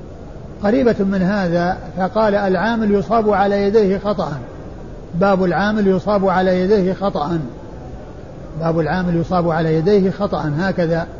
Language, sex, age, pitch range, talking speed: Arabic, male, 50-69, 185-225 Hz, 120 wpm